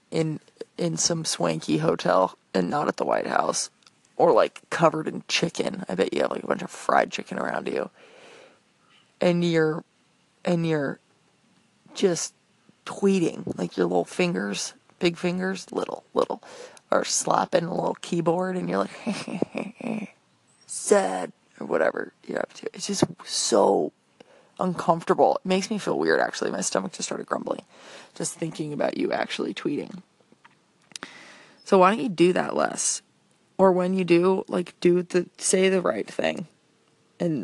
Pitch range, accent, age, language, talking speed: 170-200 Hz, American, 20-39, English, 155 wpm